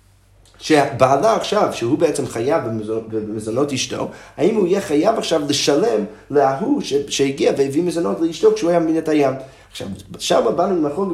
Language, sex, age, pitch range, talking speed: Hebrew, male, 20-39, 125-180 Hz, 150 wpm